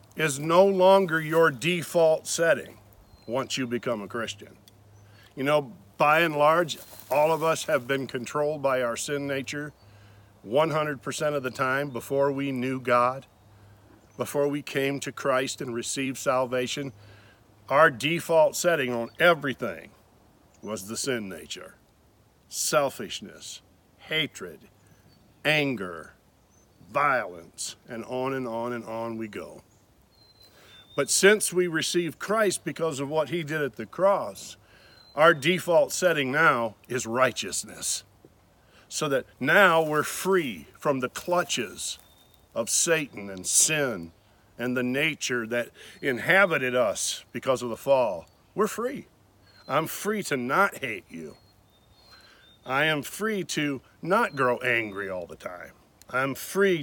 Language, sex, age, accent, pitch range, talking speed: English, male, 50-69, American, 115-155 Hz, 130 wpm